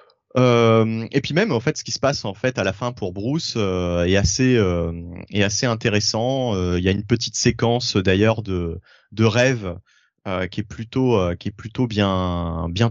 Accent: French